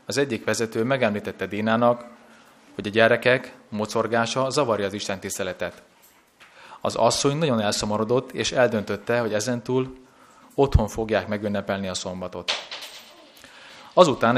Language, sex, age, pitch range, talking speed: Hungarian, male, 30-49, 105-130 Hz, 115 wpm